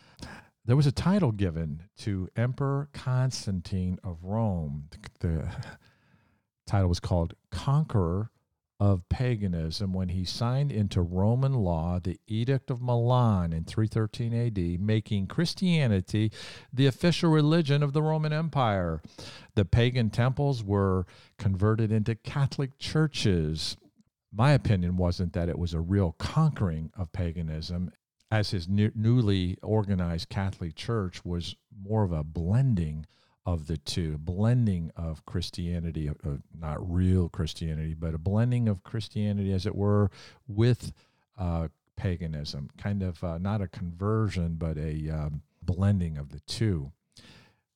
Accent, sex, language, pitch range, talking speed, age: American, male, English, 85-115 Hz, 135 wpm, 50-69